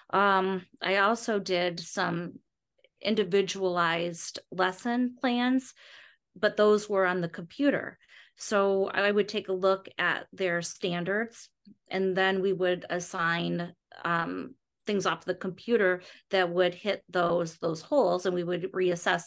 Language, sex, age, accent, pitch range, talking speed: English, female, 30-49, American, 175-205 Hz, 135 wpm